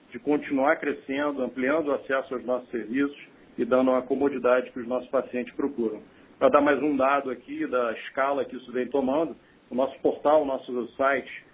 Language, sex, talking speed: Portuguese, male, 185 wpm